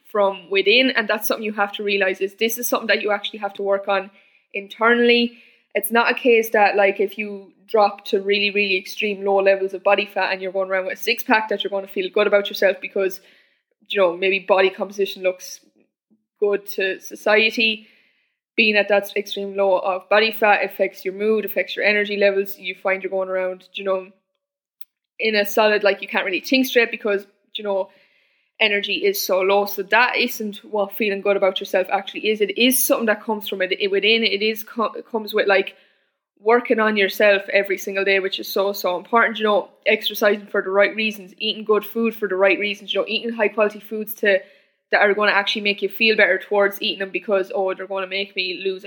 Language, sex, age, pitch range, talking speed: English, female, 10-29, 195-220 Hz, 220 wpm